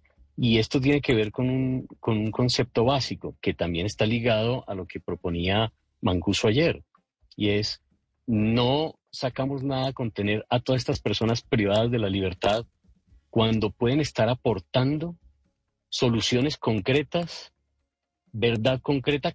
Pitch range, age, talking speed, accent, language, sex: 90-120 Hz, 40-59, 135 wpm, Colombian, Spanish, male